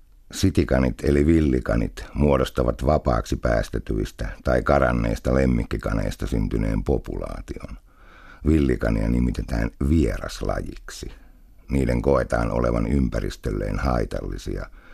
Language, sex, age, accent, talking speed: Finnish, male, 60-79, native, 75 wpm